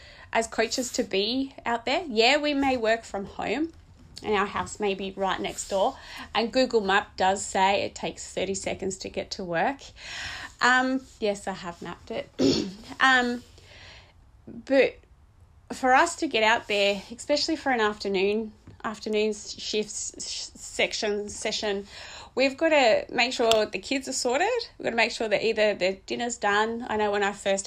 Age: 30-49